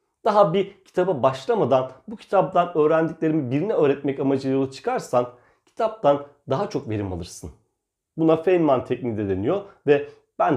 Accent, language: native, Turkish